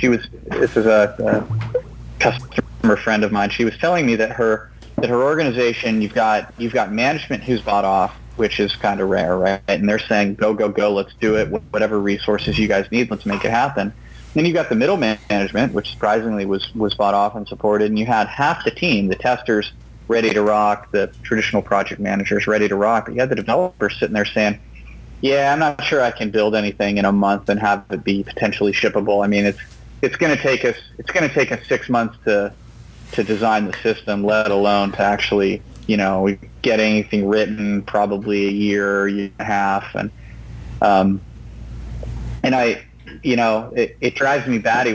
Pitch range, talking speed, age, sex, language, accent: 100-115 Hz, 210 wpm, 30-49, male, English, American